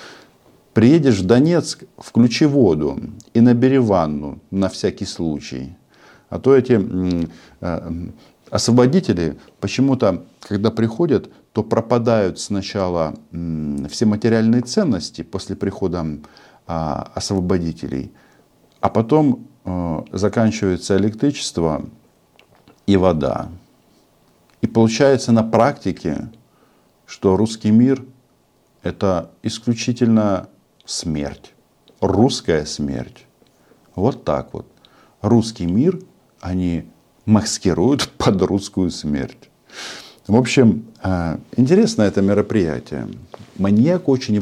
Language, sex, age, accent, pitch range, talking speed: Russian, male, 50-69, native, 90-115 Hz, 85 wpm